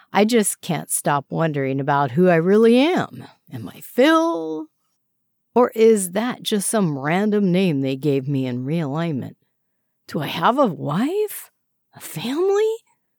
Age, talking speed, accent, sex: 50-69, 145 wpm, American, female